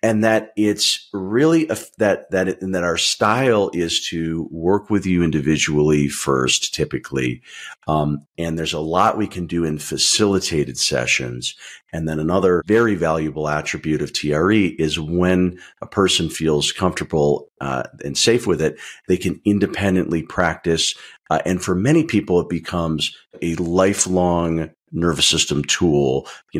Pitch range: 75-95 Hz